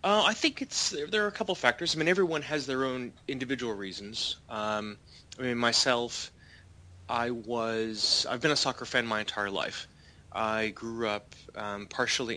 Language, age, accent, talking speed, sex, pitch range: English, 30-49, American, 180 wpm, male, 100-115 Hz